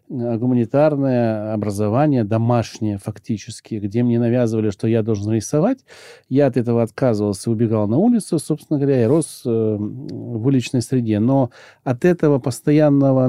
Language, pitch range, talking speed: Russian, 110-145 Hz, 130 wpm